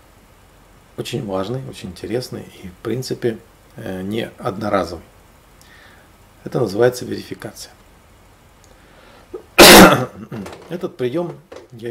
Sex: male